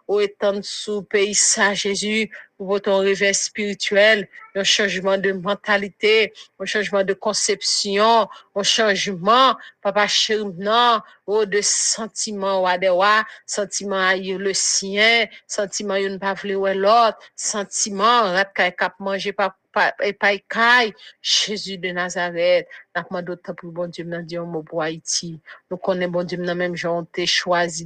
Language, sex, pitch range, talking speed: English, female, 180-205 Hz, 155 wpm